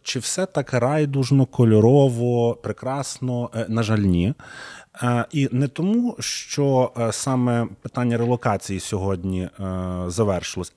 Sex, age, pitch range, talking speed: male, 30-49, 100-130 Hz, 100 wpm